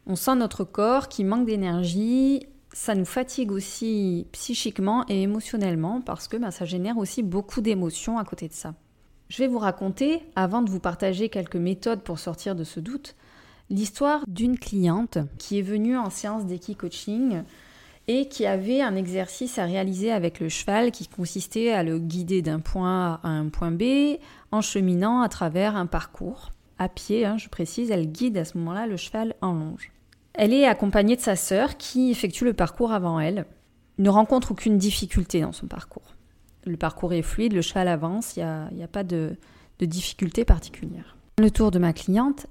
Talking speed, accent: 185 wpm, French